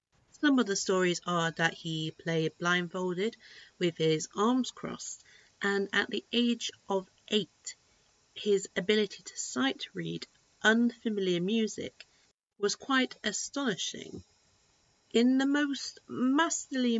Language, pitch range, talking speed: English, 165-230 Hz, 115 wpm